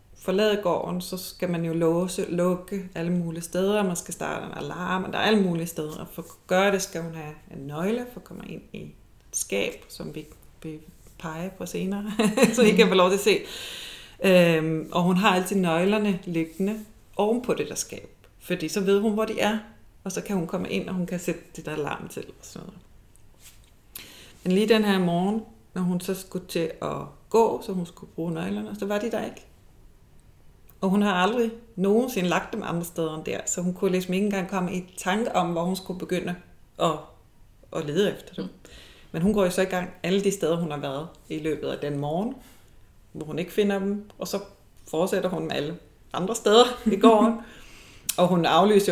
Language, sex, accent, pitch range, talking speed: Danish, female, native, 165-205 Hz, 215 wpm